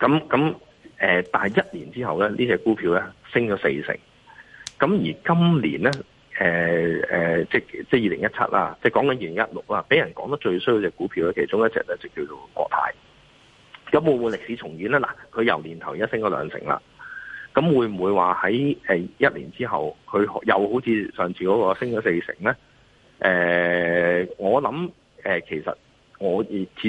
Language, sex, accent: Chinese, male, native